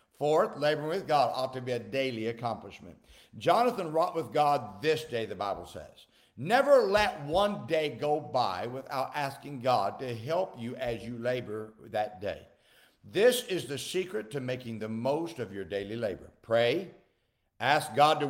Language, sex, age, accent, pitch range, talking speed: English, male, 60-79, American, 125-170 Hz, 170 wpm